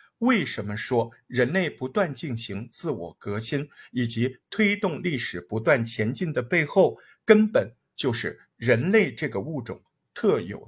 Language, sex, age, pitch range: Chinese, male, 50-69, 120-195 Hz